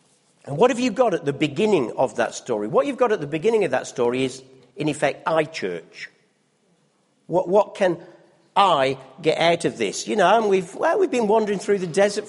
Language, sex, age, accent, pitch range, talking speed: English, male, 50-69, British, 145-210 Hz, 215 wpm